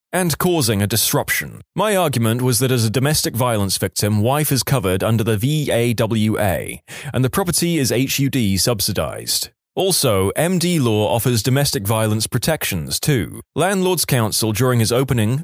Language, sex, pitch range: English, male, 110-150 Hz